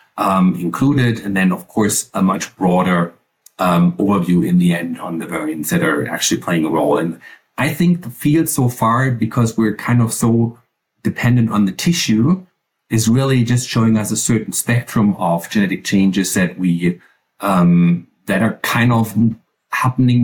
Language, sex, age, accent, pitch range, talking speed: English, male, 50-69, German, 100-125 Hz, 170 wpm